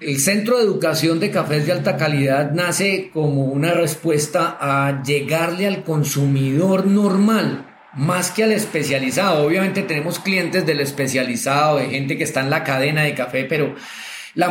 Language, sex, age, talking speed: Spanish, male, 30-49, 155 wpm